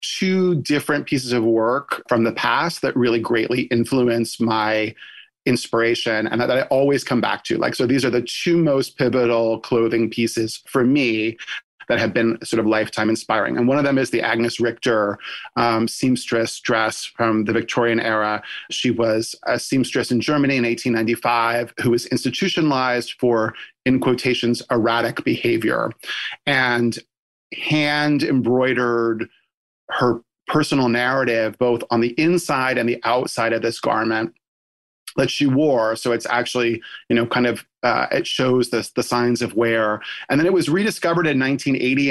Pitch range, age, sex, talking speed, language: 115-130 Hz, 30-49, male, 160 wpm, English